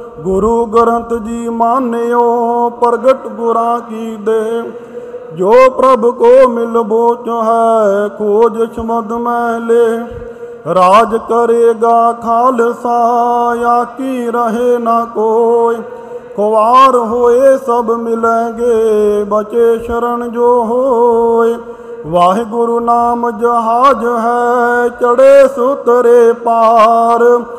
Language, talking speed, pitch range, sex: Punjabi, 85 wpm, 230-245 Hz, male